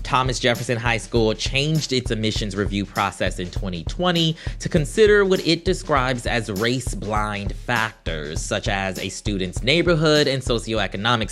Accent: American